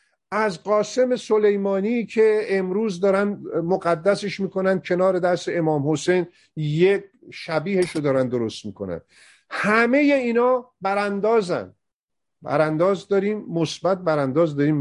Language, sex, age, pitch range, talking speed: Persian, male, 50-69, 150-200 Hz, 105 wpm